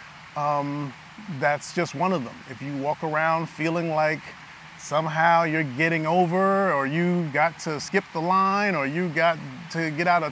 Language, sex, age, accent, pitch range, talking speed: English, male, 30-49, American, 145-170 Hz, 175 wpm